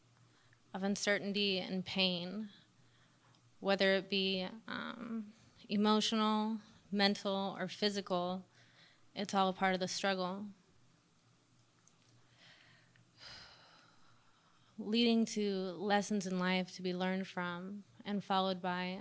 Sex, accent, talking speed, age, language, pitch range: female, American, 100 wpm, 20-39, English, 185-205 Hz